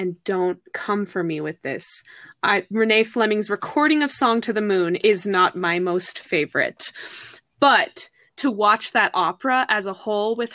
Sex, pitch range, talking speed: female, 195-230 Hz, 170 wpm